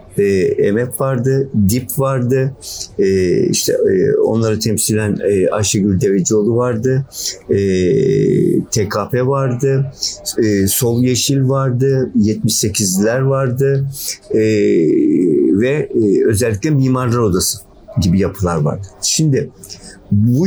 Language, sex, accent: Turkish, male, native